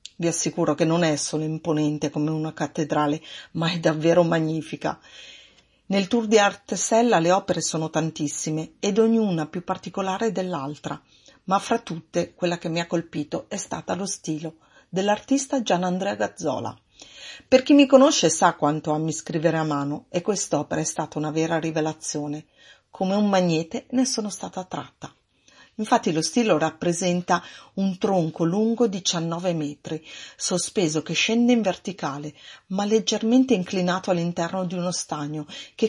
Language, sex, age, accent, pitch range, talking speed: Italian, female, 40-59, native, 155-210 Hz, 150 wpm